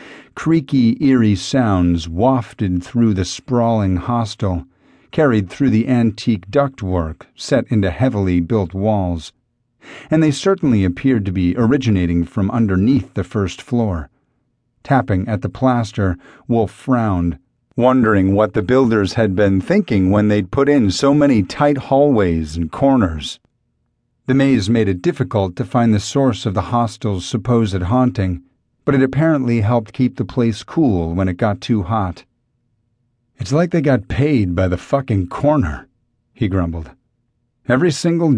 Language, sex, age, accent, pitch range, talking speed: English, male, 40-59, American, 95-130 Hz, 145 wpm